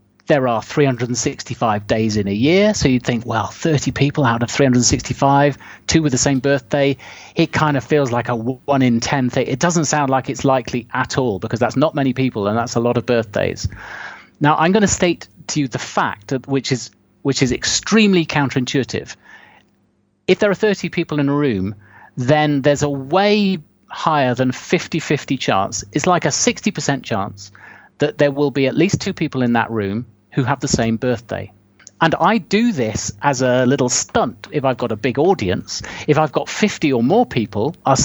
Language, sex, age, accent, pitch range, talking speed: English, male, 30-49, British, 120-150 Hz, 195 wpm